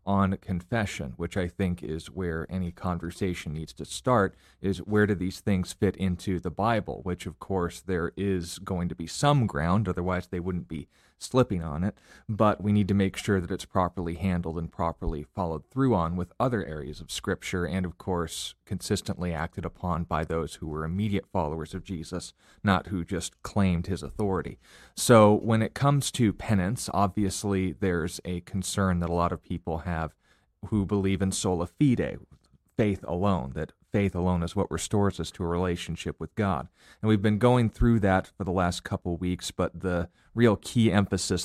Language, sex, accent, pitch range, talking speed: English, male, American, 85-100 Hz, 190 wpm